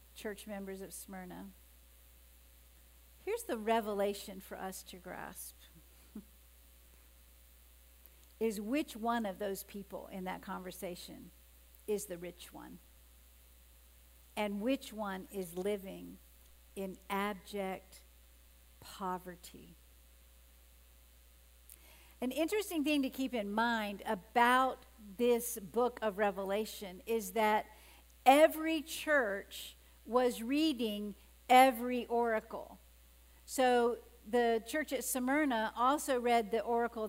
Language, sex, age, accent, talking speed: English, female, 50-69, American, 100 wpm